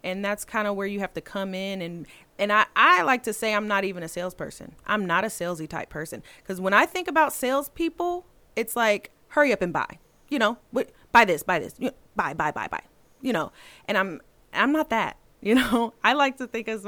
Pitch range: 170-225 Hz